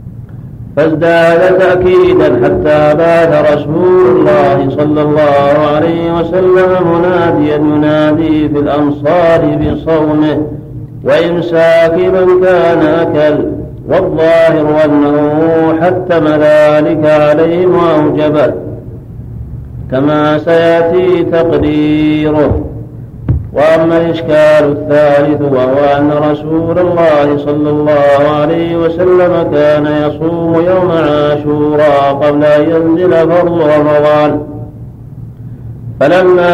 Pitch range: 150-165 Hz